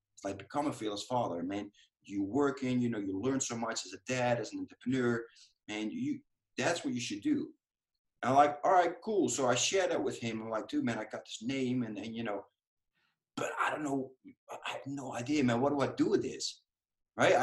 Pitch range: 110-145 Hz